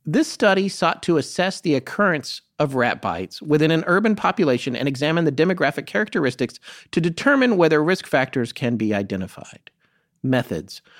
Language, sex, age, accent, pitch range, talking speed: English, male, 40-59, American, 130-195 Hz, 155 wpm